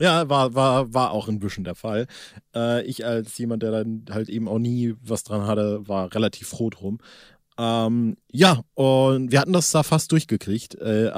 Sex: male